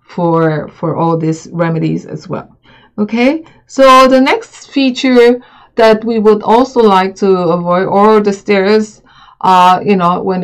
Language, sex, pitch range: English, female, 180-220 Hz